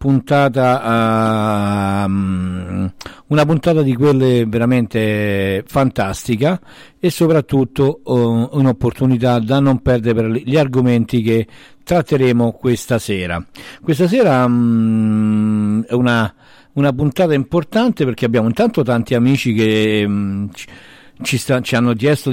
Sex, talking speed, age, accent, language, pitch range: male, 115 wpm, 50-69, native, Italian, 110-135 Hz